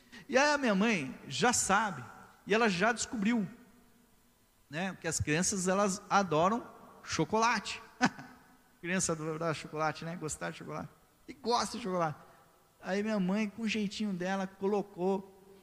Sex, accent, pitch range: male, Brazilian, 155-215 Hz